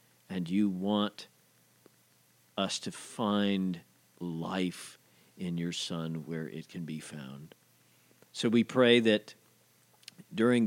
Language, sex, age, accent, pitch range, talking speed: English, male, 50-69, American, 80-110 Hz, 110 wpm